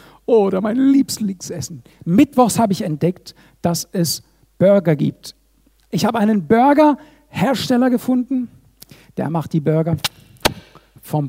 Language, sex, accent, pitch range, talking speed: German, male, German, 175-275 Hz, 110 wpm